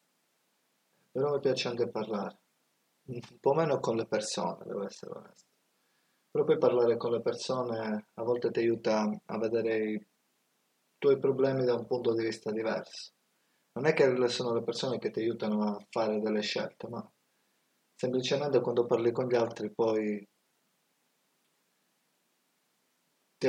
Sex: male